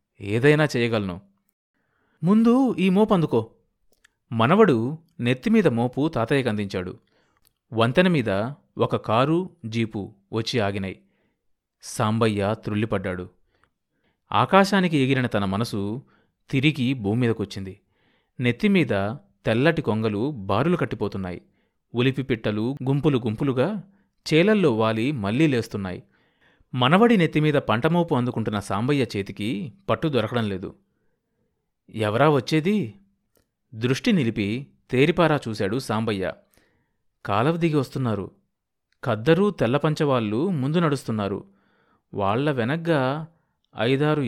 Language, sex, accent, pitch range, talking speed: Telugu, male, native, 110-155 Hz, 80 wpm